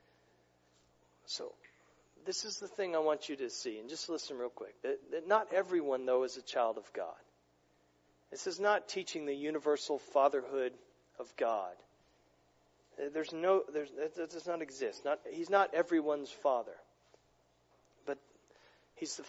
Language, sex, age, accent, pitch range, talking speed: English, male, 40-59, American, 135-195 Hz, 150 wpm